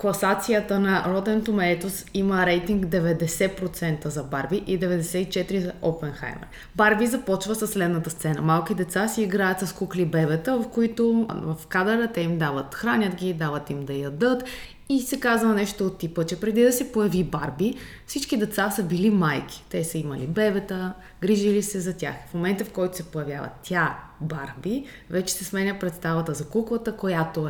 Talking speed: 170 wpm